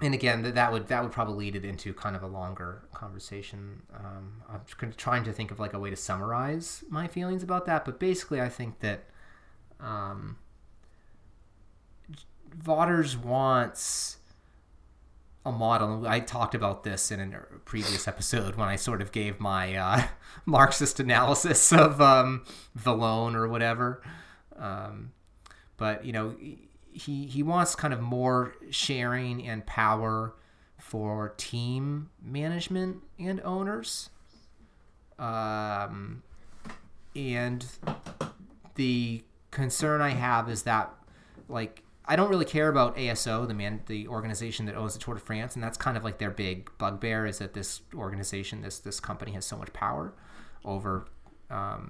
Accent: American